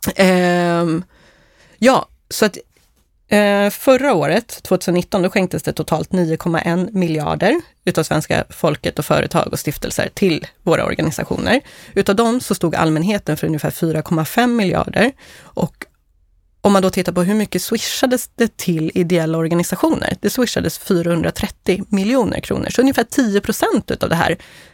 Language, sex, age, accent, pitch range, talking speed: Swedish, female, 30-49, native, 170-210 Hz, 135 wpm